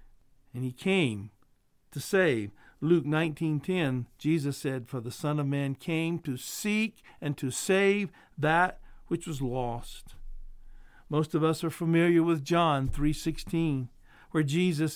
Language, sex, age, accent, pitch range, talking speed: English, male, 50-69, American, 135-170 Hz, 135 wpm